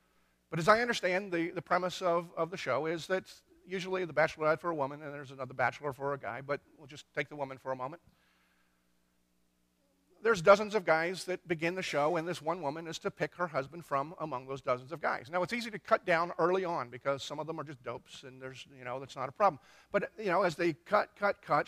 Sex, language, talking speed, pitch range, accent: male, English, 245 wpm, 145-195 Hz, American